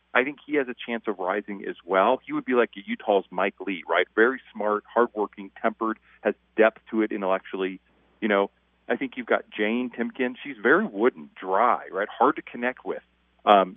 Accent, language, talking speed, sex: American, English, 200 wpm, male